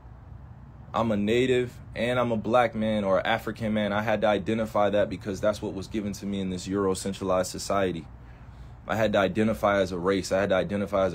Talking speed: 220 wpm